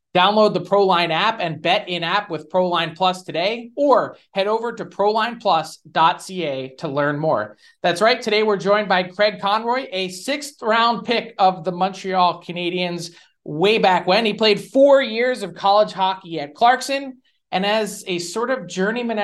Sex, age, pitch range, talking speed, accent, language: male, 20-39, 175-220 Hz, 170 wpm, American, English